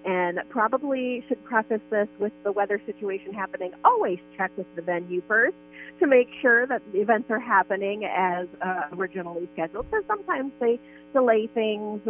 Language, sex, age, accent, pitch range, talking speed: English, female, 30-49, American, 180-245 Hz, 170 wpm